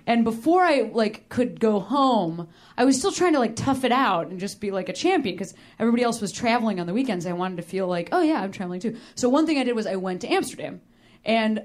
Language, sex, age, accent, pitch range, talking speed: English, female, 20-39, American, 195-275 Hz, 265 wpm